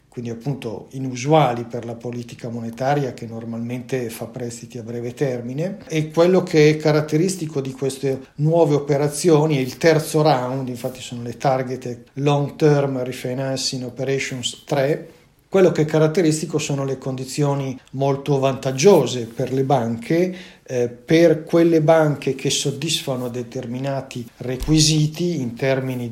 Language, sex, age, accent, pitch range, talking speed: Italian, male, 50-69, native, 125-150 Hz, 130 wpm